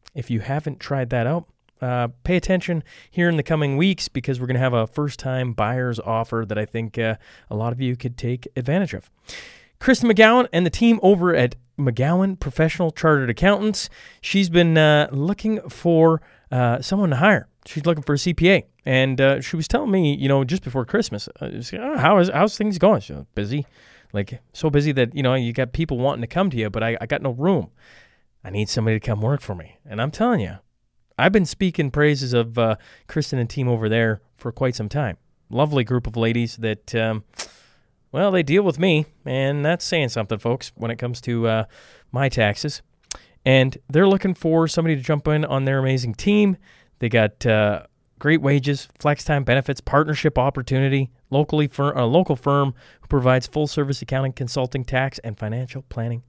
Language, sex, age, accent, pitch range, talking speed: English, male, 30-49, American, 120-160 Hz, 200 wpm